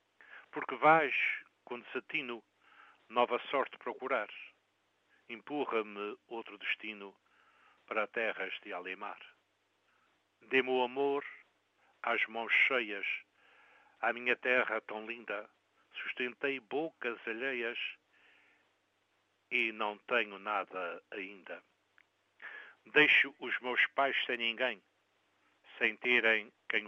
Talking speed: 95 wpm